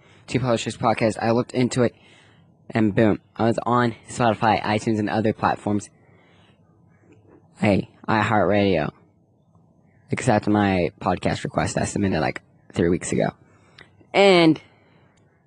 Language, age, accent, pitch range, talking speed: English, 10-29, American, 110-135 Hz, 115 wpm